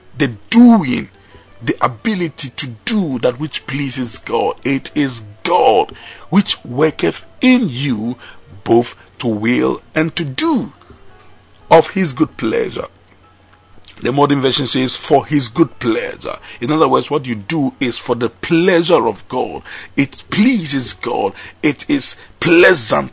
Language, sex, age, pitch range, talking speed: English, male, 50-69, 115-165 Hz, 135 wpm